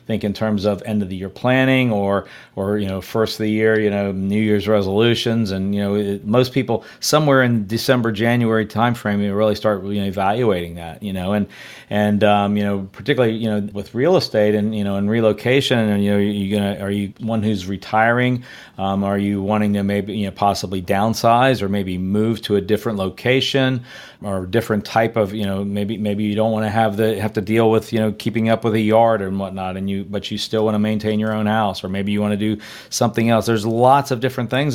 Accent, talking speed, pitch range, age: American, 240 wpm, 105-120 Hz, 40-59